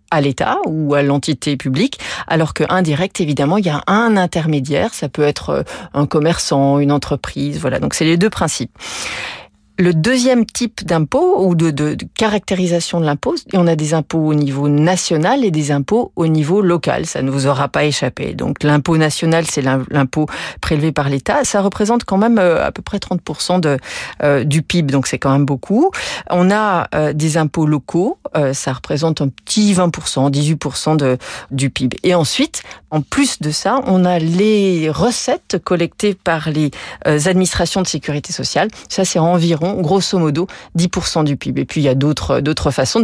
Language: French